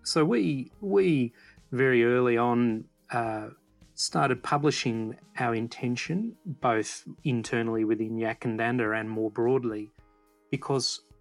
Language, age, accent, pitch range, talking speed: English, 30-49, Australian, 110-130 Hz, 110 wpm